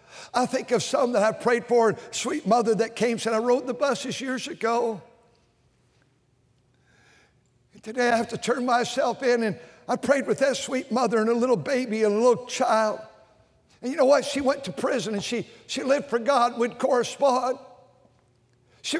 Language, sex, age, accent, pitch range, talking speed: English, male, 60-79, American, 225-275 Hz, 185 wpm